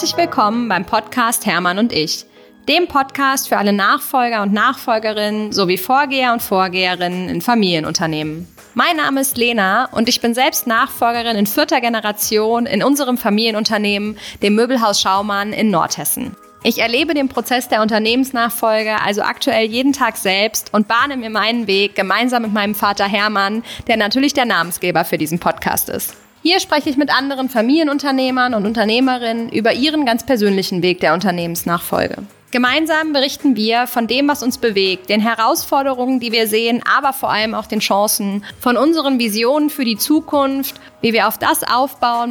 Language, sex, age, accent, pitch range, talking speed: German, female, 20-39, German, 205-255 Hz, 160 wpm